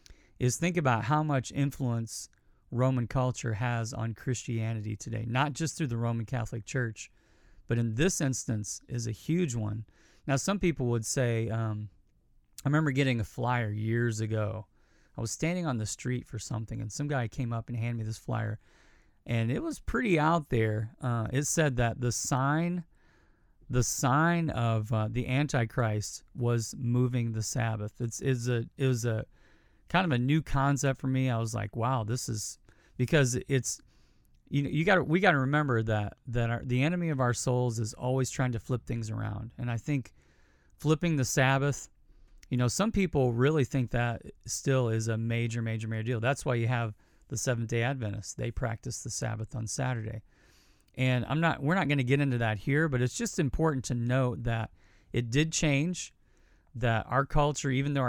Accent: American